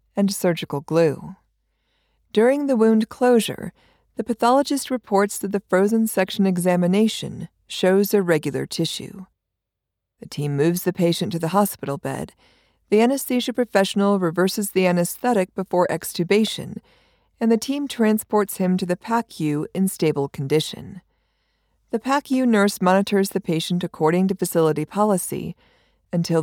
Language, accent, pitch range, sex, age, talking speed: English, American, 165-215 Hz, female, 40-59, 130 wpm